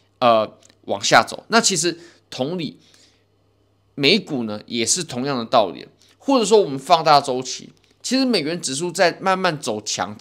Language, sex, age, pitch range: Chinese, male, 20-39, 110-180 Hz